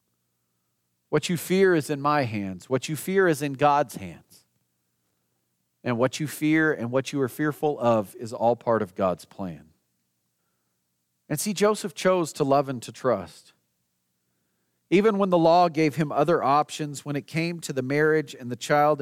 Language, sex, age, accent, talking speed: English, male, 40-59, American, 175 wpm